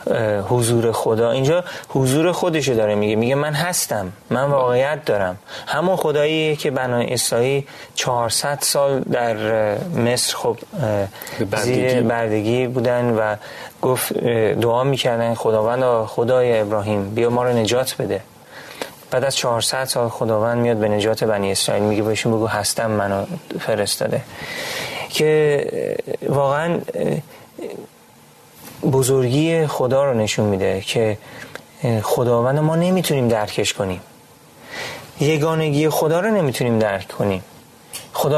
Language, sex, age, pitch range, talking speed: Persian, male, 30-49, 115-150 Hz, 115 wpm